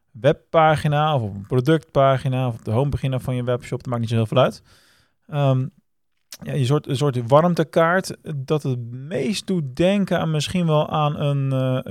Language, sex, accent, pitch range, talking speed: Dutch, male, Dutch, 125-150 Hz, 185 wpm